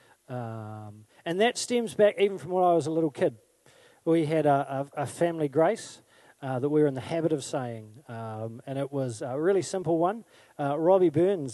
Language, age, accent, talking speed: English, 40-59, Australian, 210 wpm